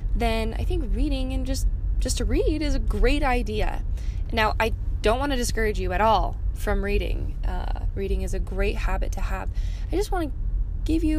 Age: 10-29